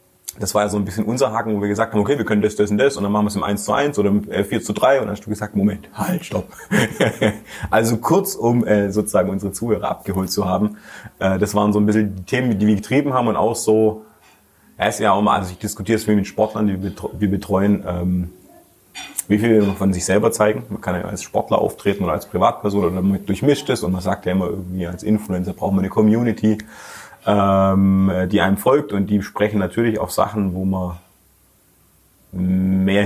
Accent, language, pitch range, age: German, German, 95-110 Hz, 30-49